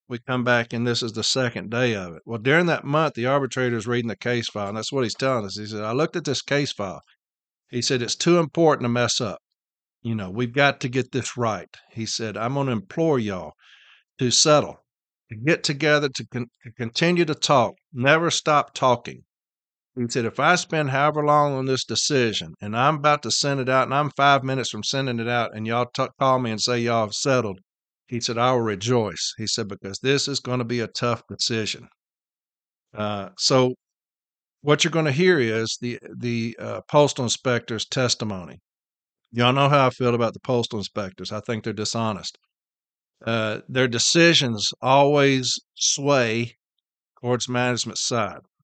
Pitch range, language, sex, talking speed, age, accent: 115-135 Hz, English, male, 190 wpm, 50-69, American